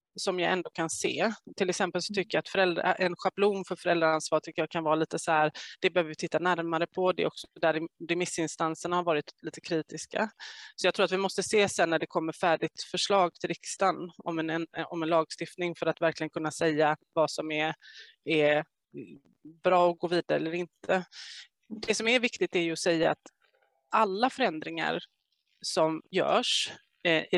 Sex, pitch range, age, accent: female, 165-200 Hz, 20-39, native